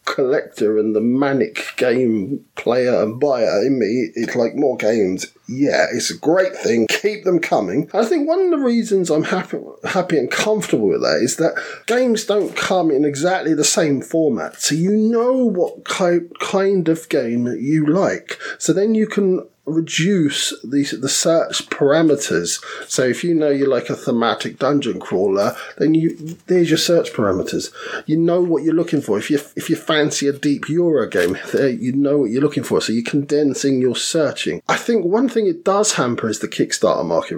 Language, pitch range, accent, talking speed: English, 135-190 Hz, British, 190 wpm